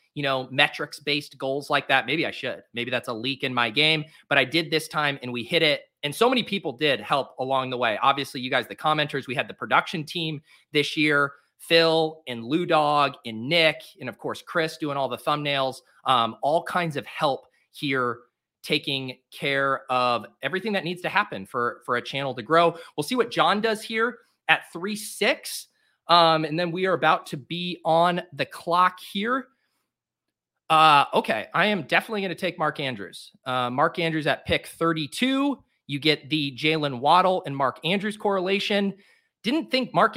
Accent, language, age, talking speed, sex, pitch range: American, English, 30-49, 195 wpm, male, 135-170 Hz